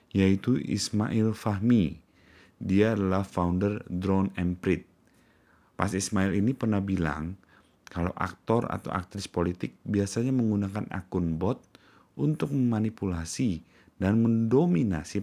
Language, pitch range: Indonesian, 90-115 Hz